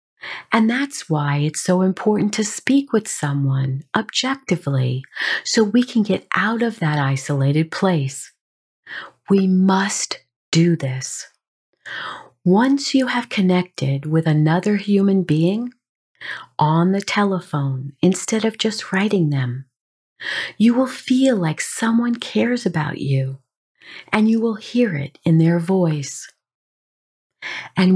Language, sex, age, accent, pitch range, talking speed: English, female, 50-69, American, 150-225 Hz, 120 wpm